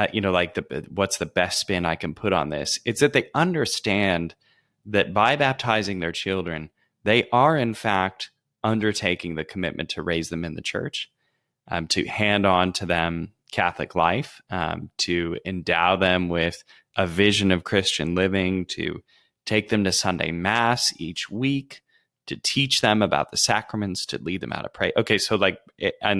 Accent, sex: American, male